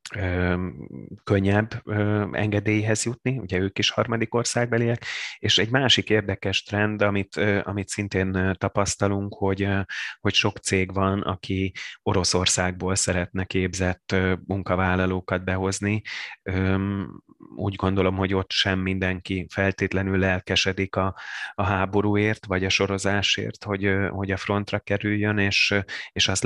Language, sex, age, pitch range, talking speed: Hungarian, male, 30-49, 90-105 Hz, 115 wpm